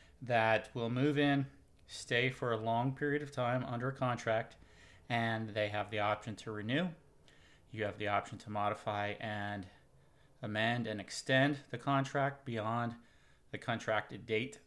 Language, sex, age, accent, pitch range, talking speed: English, male, 30-49, American, 105-130 Hz, 150 wpm